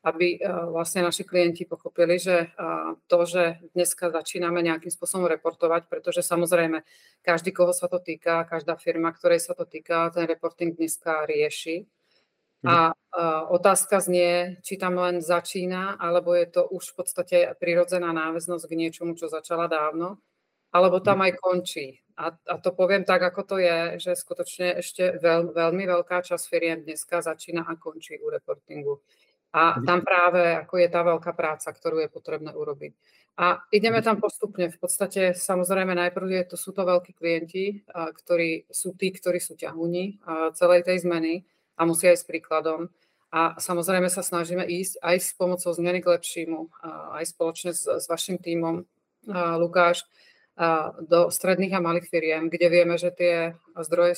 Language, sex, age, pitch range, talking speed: Czech, female, 40-59, 165-180 Hz, 160 wpm